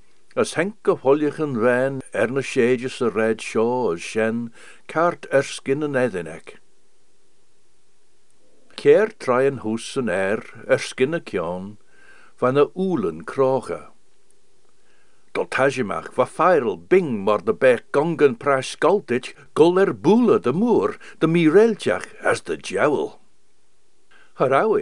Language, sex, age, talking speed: English, male, 60-79, 100 wpm